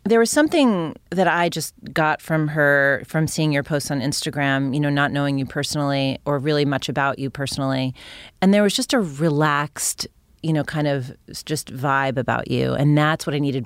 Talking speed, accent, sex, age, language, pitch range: 200 wpm, American, female, 30-49, English, 135-160 Hz